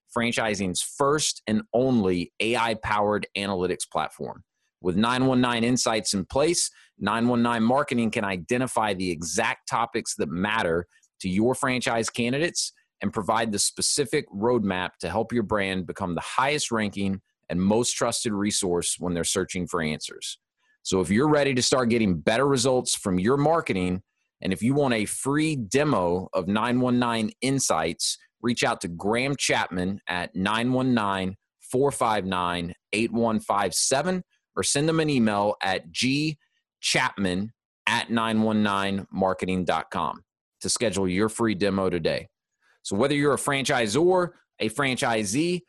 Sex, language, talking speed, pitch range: male, English, 130 wpm, 100-130 Hz